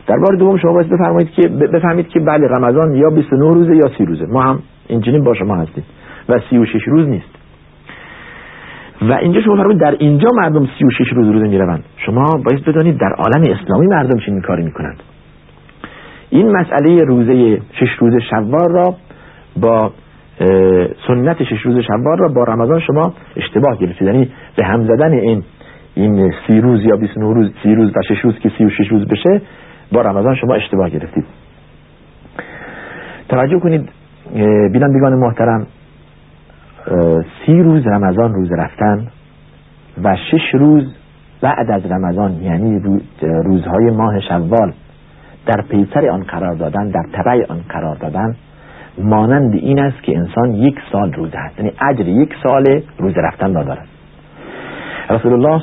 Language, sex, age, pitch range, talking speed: Persian, male, 50-69, 100-150 Hz, 145 wpm